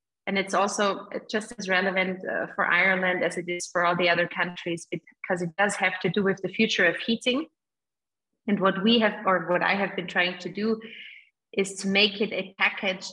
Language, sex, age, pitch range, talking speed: English, female, 30-49, 185-225 Hz, 210 wpm